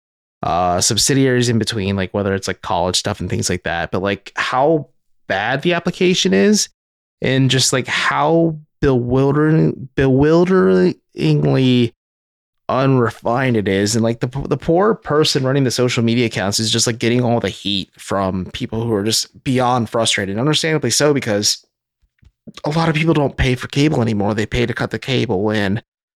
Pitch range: 100-135 Hz